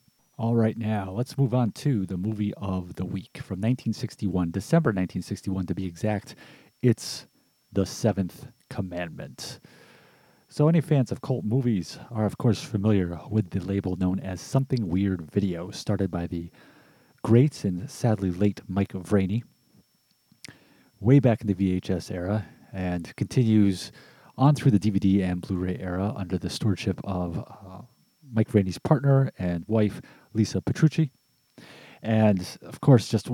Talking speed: 145 wpm